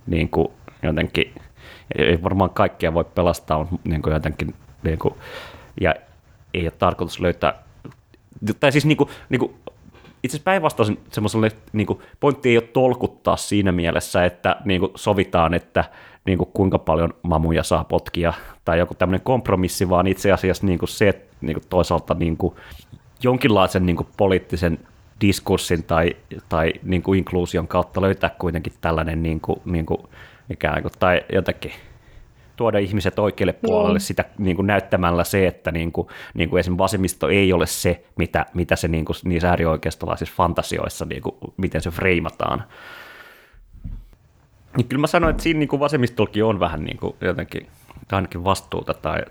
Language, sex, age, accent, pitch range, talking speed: Finnish, male, 30-49, native, 85-110 Hz, 135 wpm